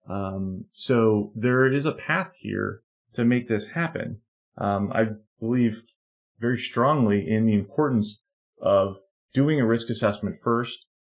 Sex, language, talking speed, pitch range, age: male, English, 135 wpm, 100-115 Hz, 30-49